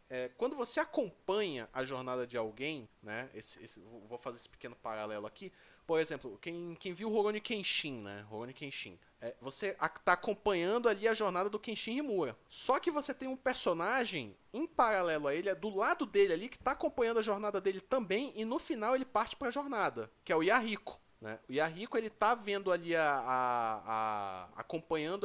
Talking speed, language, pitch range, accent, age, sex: 200 wpm, Portuguese, 135-215 Hz, Brazilian, 20-39, male